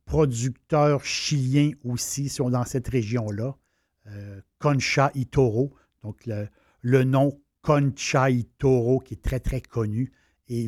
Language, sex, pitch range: French, male, 115-145 Hz